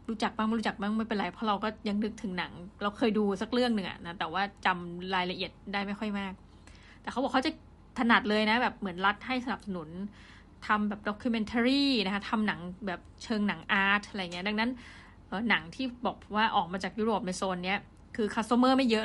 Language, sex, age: Thai, female, 20-39